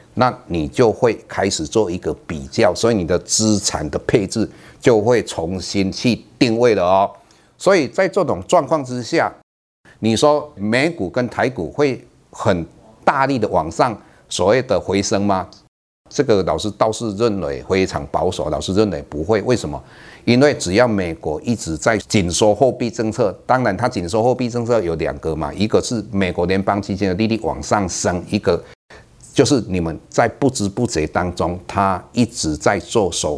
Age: 50-69